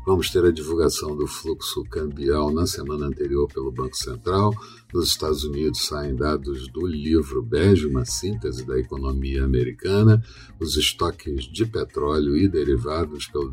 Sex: male